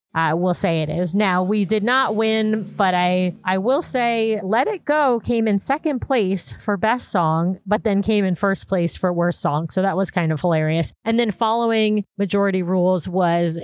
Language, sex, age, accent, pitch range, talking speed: English, female, 30-49, American, 175-210 Hz, 205 wpm